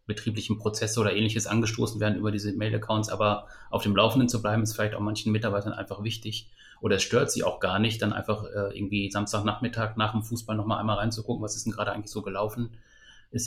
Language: German